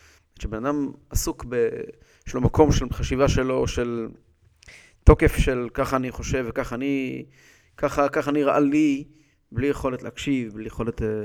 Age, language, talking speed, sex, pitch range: 30-49, English, 135 wpm, male, 120-150 Hz